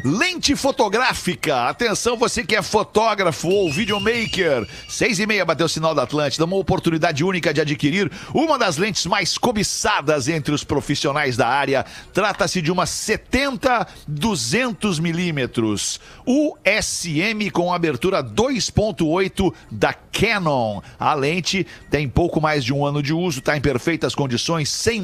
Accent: Brazilian